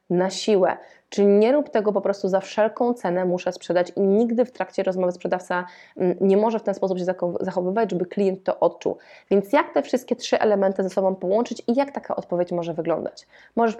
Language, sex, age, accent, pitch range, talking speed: Polish, female, 20-39, native, 185-230 Hz, 200 wpm